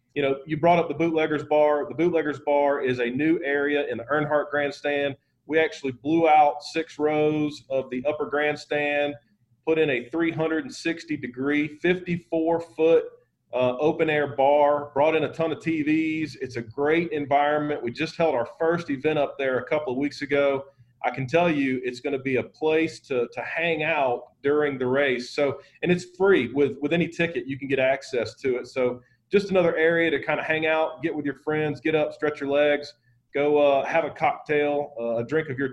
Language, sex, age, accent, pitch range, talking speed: English, male, 40-59, American, 135-160 Hz, 205 wpm